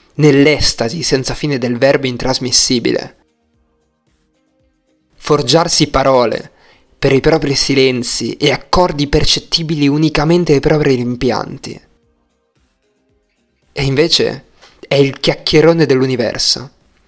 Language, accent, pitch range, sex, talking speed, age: Italian, native, 125-150 Hz, male, 90 wpm, 20-39